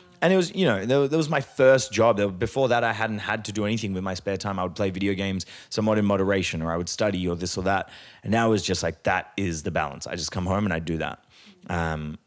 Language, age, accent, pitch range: English, 30-49, Australian, 90-110 Hz